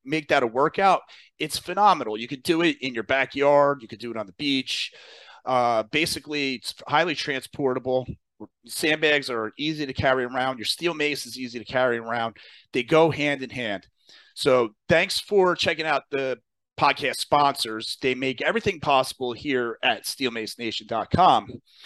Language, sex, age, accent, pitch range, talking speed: English, male, 40-59, American, 130-160 Hz, 160 wpm